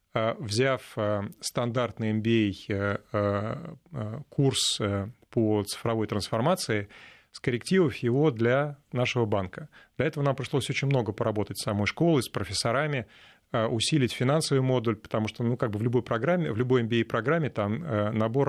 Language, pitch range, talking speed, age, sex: Russian, 110-140 Hz, 130 wpm, 30-49, male